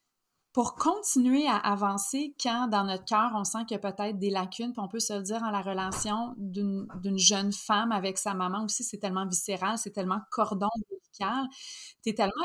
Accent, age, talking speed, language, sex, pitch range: Canadian, 30-49, 200 wpm, English, female, 195-230 Hz